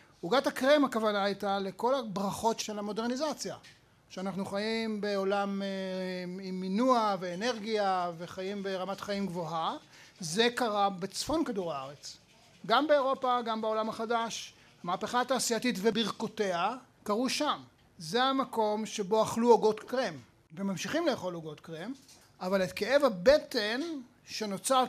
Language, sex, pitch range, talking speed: Hebrew, male, 190-240 Hz, 115 wpm